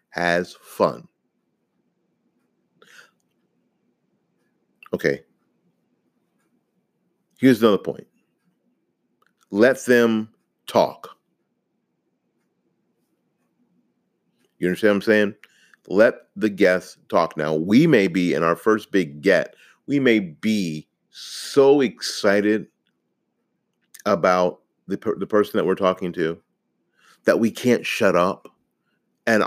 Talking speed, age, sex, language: 95 wpm, 50-69, male, English